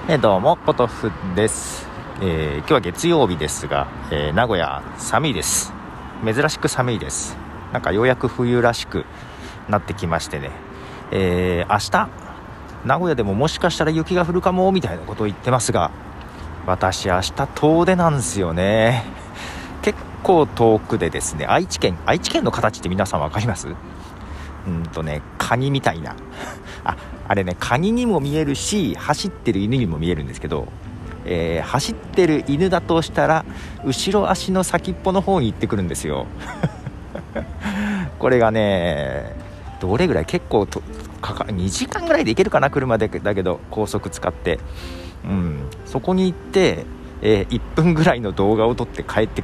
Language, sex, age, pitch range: Japanese, male, 40-59, 85-135 Hz